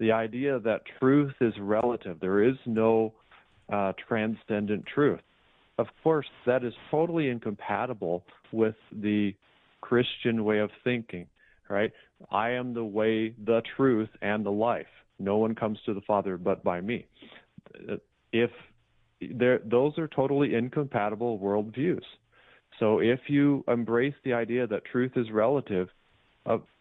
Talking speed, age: 135 wpm, 40-59